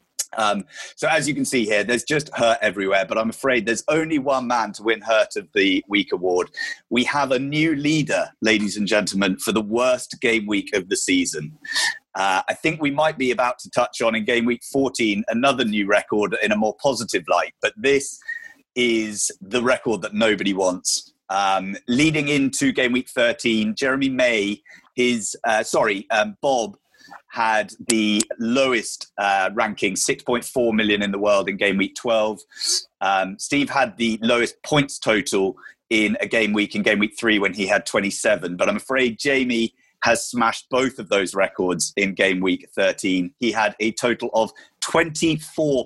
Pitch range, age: 110-150 Hz, 30-49